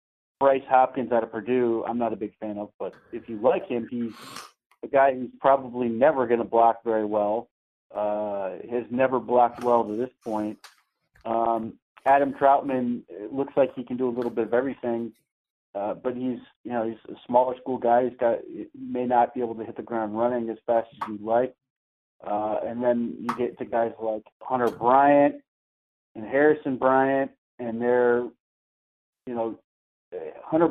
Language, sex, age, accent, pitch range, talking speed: English, male, 40-59, American, 115-135 Hz, 180 wpm